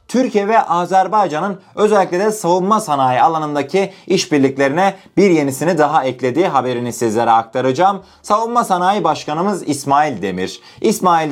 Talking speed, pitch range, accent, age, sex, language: 115 wpm, 135-190 Hz, native, 30-49, male, Turkish